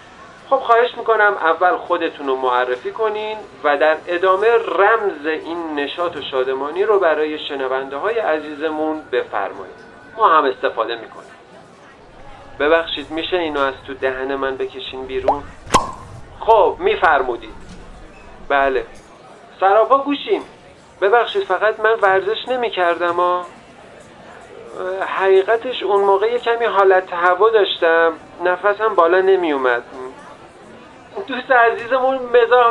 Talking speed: 110 wpm